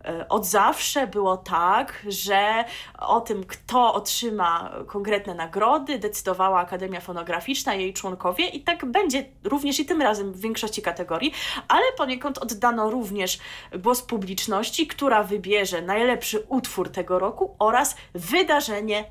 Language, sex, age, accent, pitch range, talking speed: Polish, female, 20-39, native, 205-260 Hz, 125 wpm